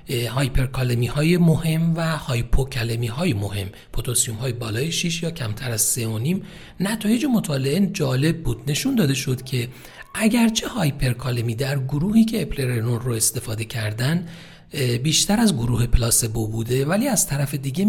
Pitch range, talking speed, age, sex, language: 120-165 Hz, 140 wpm, 40-59, male, Persian